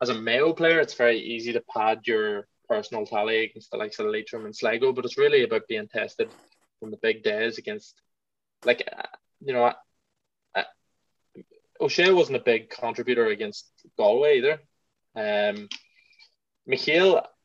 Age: 20-39